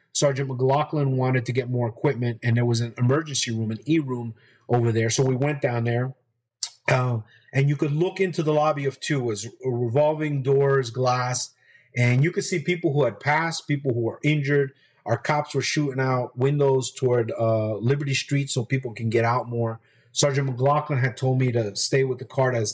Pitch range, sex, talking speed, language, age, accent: 120-140 Hz, male, 200 wpm, English, 30-49, American